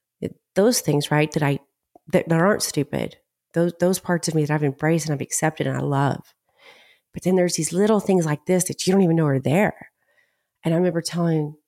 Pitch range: 165-205 Hz